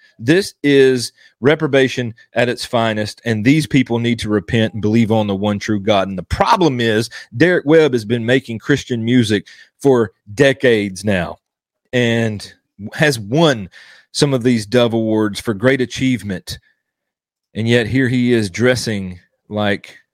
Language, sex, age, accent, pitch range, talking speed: English, male, 40-59, American, 105-130 Hz, 150 wpm